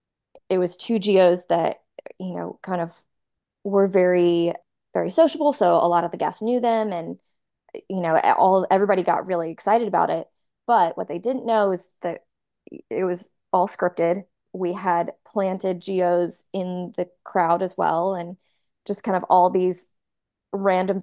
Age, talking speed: 20-39, 165 wpm